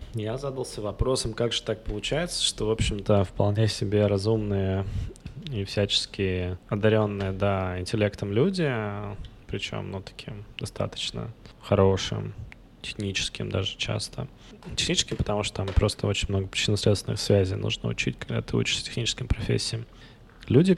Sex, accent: male, native